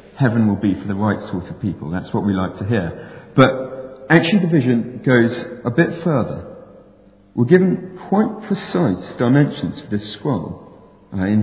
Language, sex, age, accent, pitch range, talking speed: English, male, 40-59, British, 105-170 Hz, 170 wpm